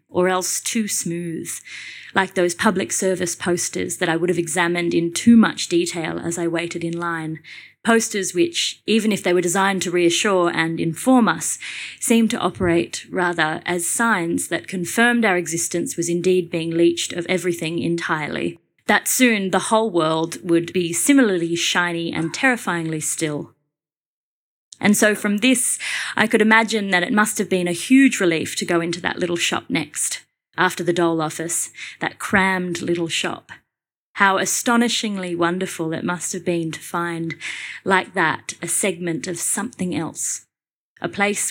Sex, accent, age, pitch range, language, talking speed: female, Australian, 30-49, 170-195 Hz, English, 160 wpm